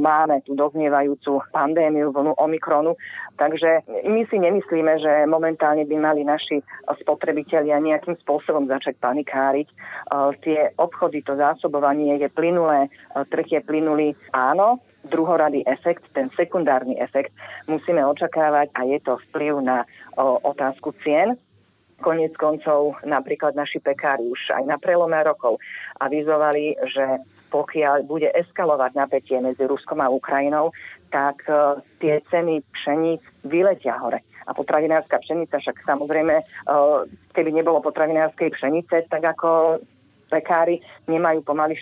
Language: Slovak